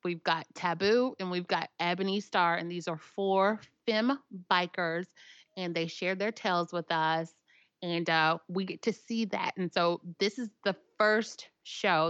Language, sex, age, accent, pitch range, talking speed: English, female, 30-49, American, 160-190 Hz, 175 wpm